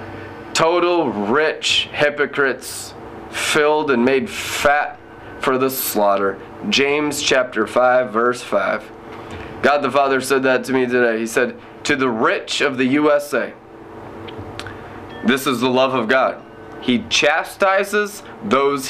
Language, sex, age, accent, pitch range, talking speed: English, male, 20-39, American, 115-145 Hz, 125 wpm